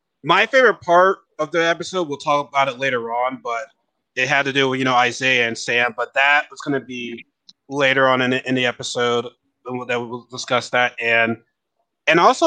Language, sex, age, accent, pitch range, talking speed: English, male, 20-39, American, 125-150 Hz, 210 wpm